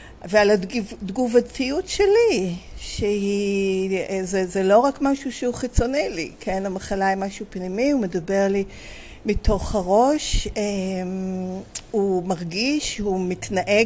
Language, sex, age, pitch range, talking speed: Hebrew, female, 50-69, 200-260 Hz, 110 wpm